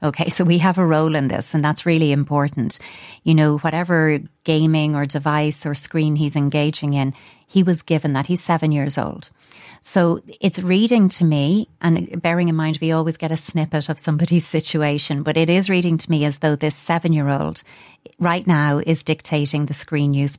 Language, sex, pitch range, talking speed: English, female, 145-170 Hz, 200 wpm